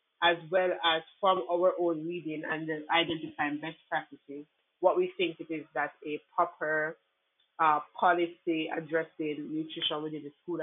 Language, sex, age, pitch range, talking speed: English, female, 20-39, 145-170 Hz, 150 wpm